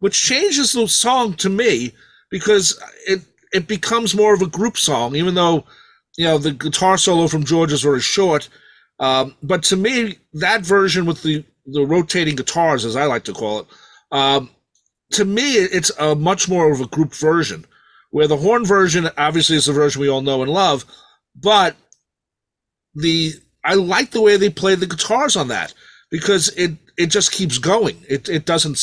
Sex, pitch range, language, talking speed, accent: male, 140-190 Hz, English, 185 wpm, American